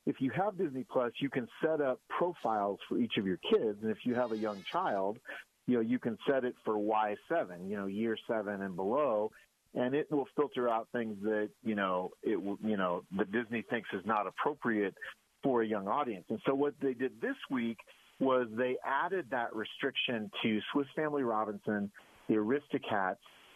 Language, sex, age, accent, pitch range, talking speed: English, male, 40-59, American, 110-140 Hz, 195 wpm